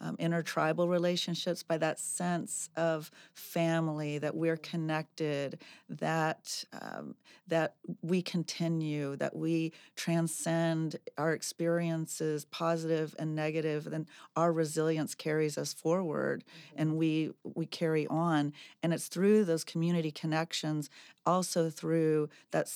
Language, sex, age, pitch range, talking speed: English, female, 40-59, 155-170 Hz, 115 wpm